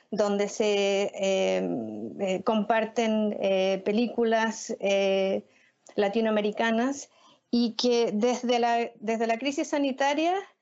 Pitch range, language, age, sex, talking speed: 225-270 Hz, Spanish, 40-59, female, 95 wpm